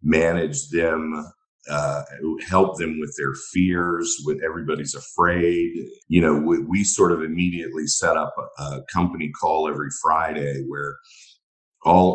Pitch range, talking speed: 80-100 Hz, 140 wpm